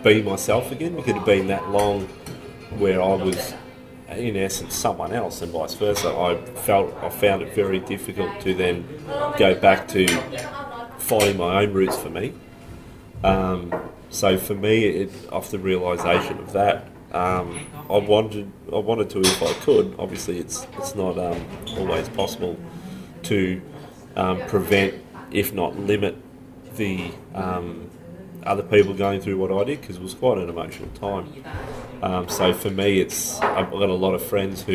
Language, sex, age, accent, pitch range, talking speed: English, male, 30-49, Australian, 90-100 Hz, 170 wpm